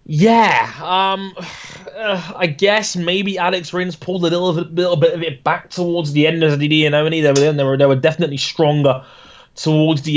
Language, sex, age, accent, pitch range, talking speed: English, male, 20-39, British, 130-150 Hz, 200 wpm